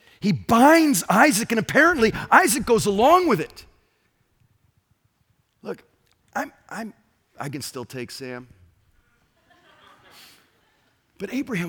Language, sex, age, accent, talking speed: English, male, 40-59, American, 105 wpm